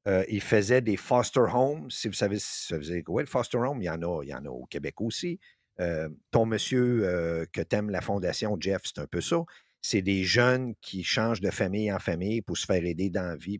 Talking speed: 240 wpm